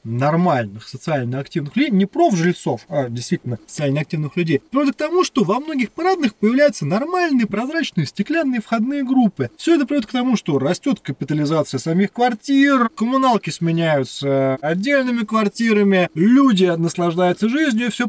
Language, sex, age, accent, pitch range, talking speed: Russian, male, 20-39, native, 170-230 Hz, 145 wpm